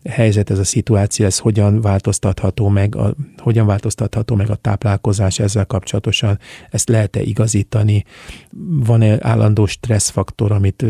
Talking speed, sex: 125 wpm, male